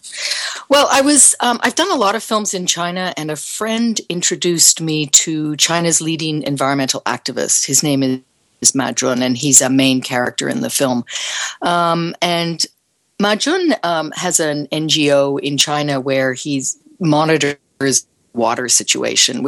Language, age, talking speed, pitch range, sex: English, 50-69, 150 wpm, 135-180 Hz, female